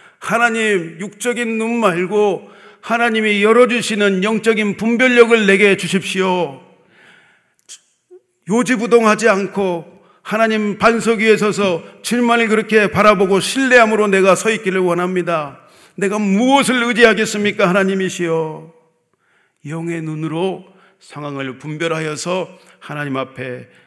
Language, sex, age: Korean, male, 40-59